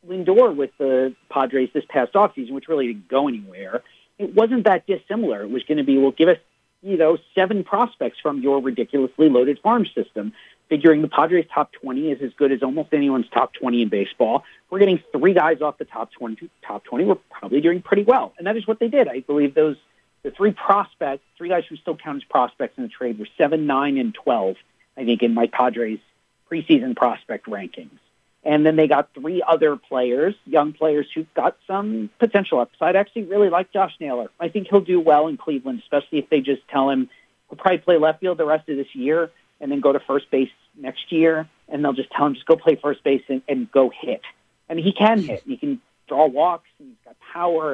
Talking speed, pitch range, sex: 220 wpm, 135-200 Hz, male